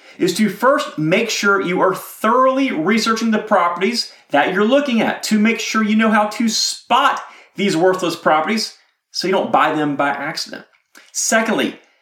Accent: American